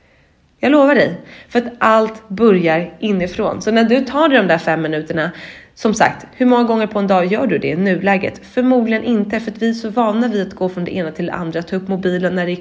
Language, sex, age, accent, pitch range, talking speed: English, female, 20-39, Swedish, 165-215 Hz, 245 wpm